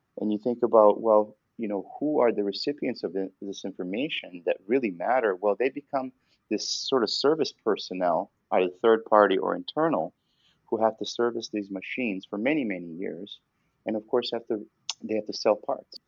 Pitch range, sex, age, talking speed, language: 95-120 Hz, male, 30-49, 180 wpm, English